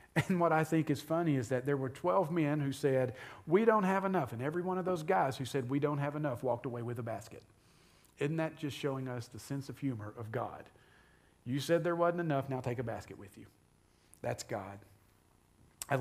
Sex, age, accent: male, 40-59, American